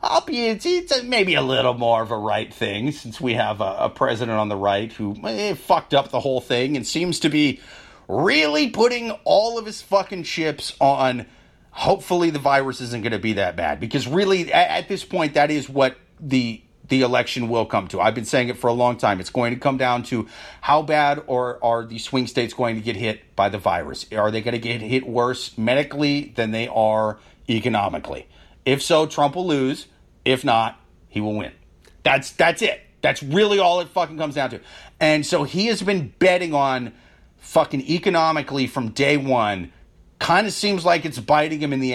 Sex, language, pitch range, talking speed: male, English, 120-150 Hz, 210 wpm